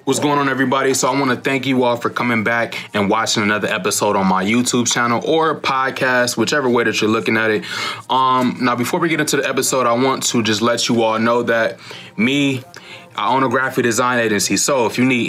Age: 20-39